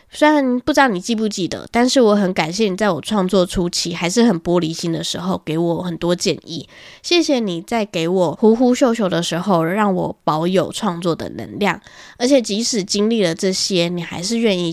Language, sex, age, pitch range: Chinese, female, 20-39, 180-235 Hz